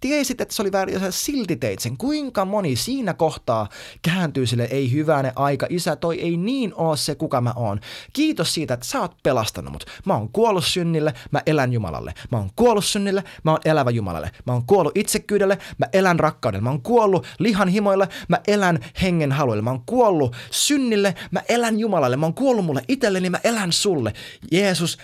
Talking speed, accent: 195 wpm, native